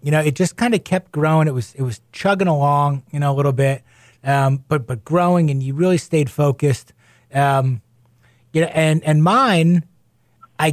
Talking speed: 195 wpm